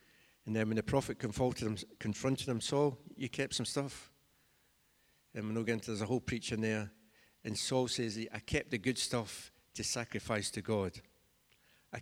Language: English